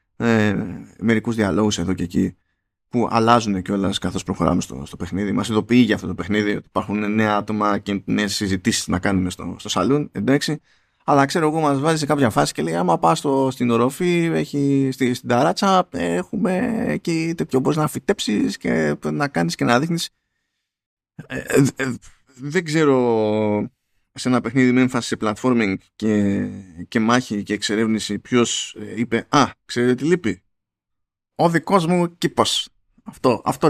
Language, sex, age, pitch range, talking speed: Greek, male, 20-39, 105-140 Hz, 160 wpm